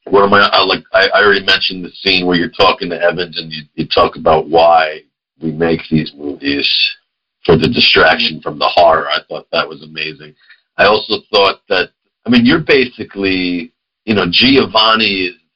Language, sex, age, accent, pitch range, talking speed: English, male, 50-69, American, 85-130 Hz, 185 wpm